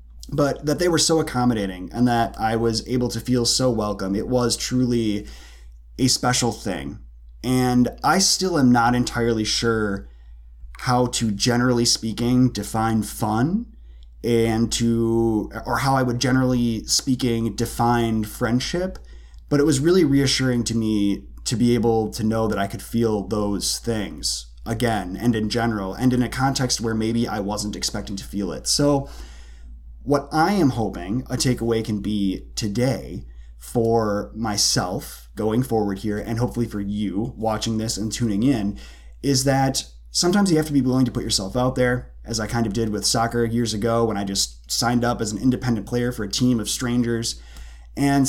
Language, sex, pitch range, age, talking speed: English, male, 105-125 Hz, 20-39, 175 wpm